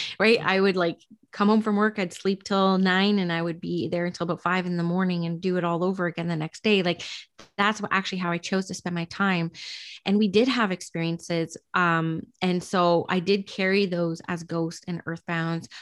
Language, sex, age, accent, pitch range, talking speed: English, female, 20-39, American, 175-220 Hz, 225 wpm